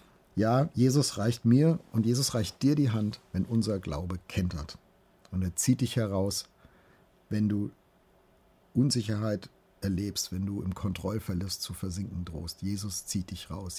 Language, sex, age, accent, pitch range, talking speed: German, male, 50-69, German, 95-120 Hz, 150 wpm